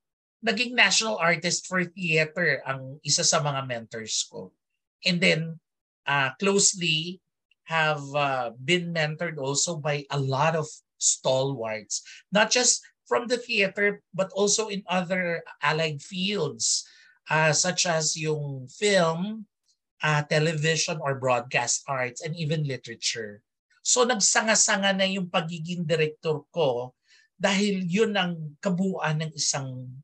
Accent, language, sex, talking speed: native, Filipino, male, 125 wpm